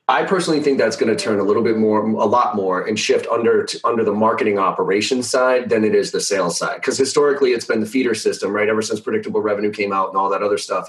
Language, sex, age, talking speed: English, male, 30-49, 265 wpm